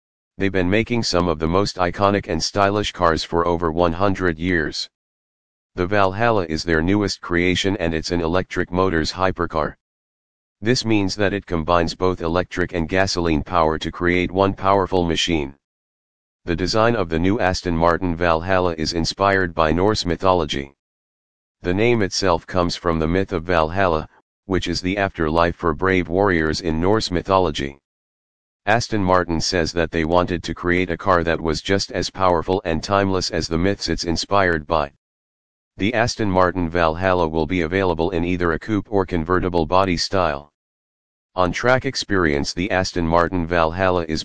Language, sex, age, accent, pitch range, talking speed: English, male, 40-59, American, 80-95 Hz, 165 wpm